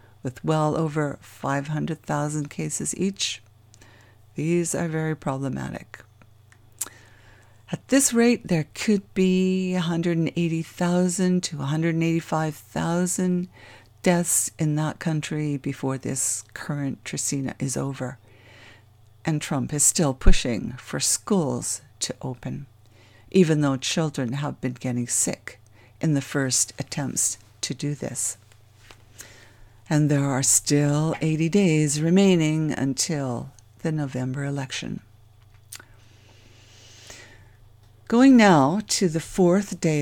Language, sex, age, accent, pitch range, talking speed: English, female, 60-79, American, 110-160 Hz, 105 wpm